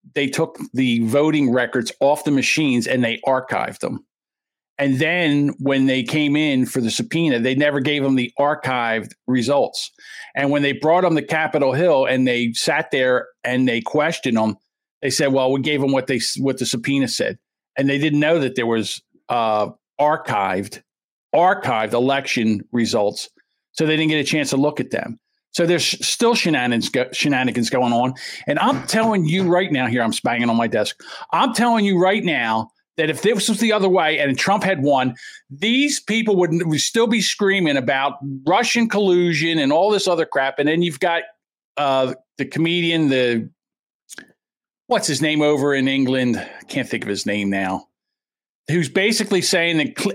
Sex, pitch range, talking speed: male, 130-175 Hz, 185 wpm